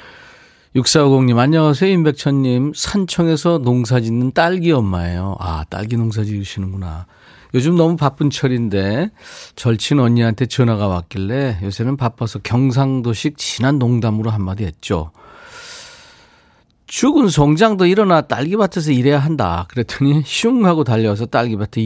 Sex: male